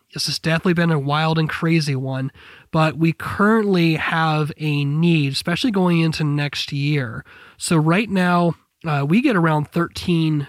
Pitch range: 145-170 Hz